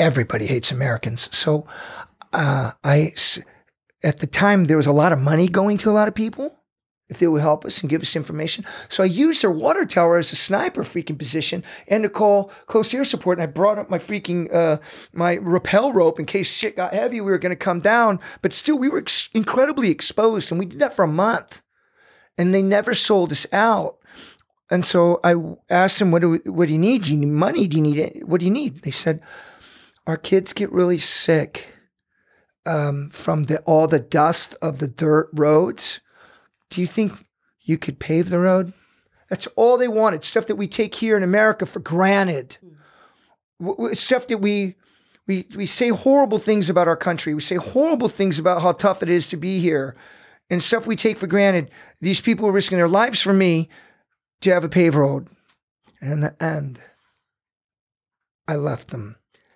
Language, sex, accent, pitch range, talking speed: English, male, American, 160-210 Hz, 195 wpm